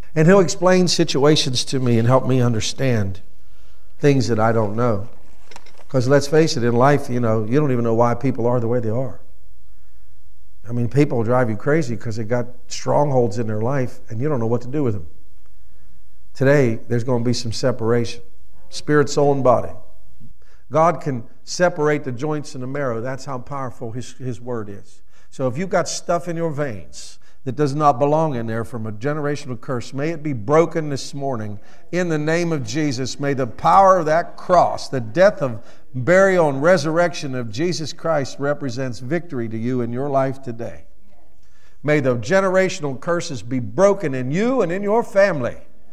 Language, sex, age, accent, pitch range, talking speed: English, male, 50-69, American, 115-150 Hz, 190 wpm